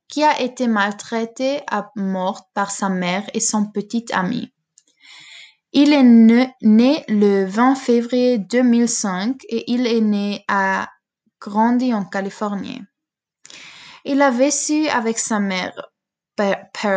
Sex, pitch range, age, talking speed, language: female, 205-255 Hz, 20-39, 125 wpm, French